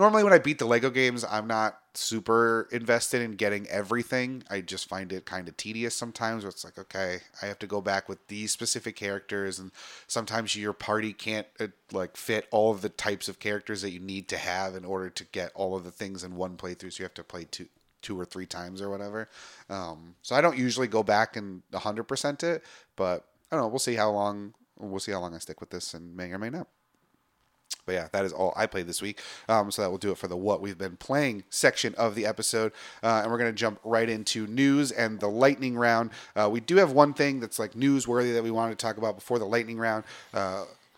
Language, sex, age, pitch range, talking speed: English, male, 30-49, 95-115 Hz, 240 wpm